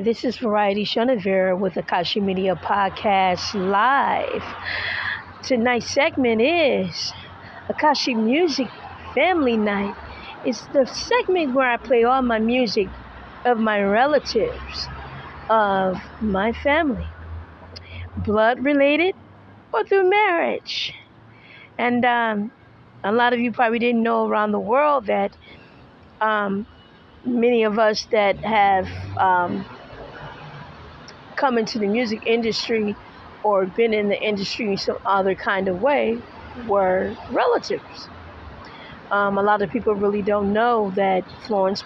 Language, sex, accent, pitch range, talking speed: English, female, American, 195-245 Hz, 120 wpm